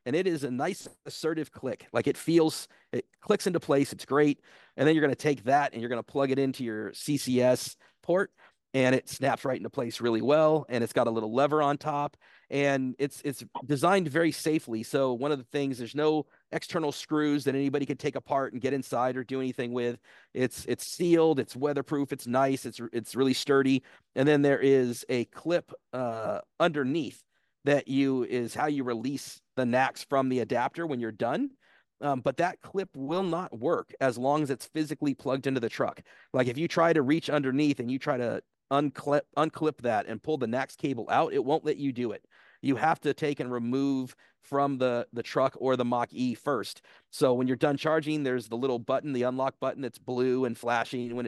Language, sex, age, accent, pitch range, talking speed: English, male, 40-59, American, 125-145 Hz, 215 wpm